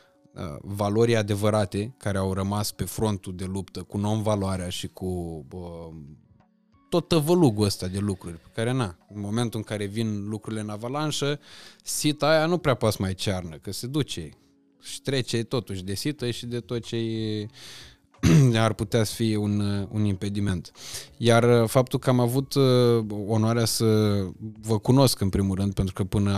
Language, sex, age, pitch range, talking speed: Romanian, male, 20-39, 100-115 Hz, 165 wpm